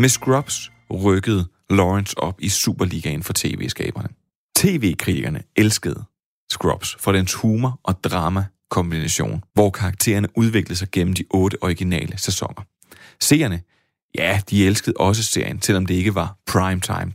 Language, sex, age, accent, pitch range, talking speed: Danish, male, 30-49, native, 90-115 Hz, 135 wpm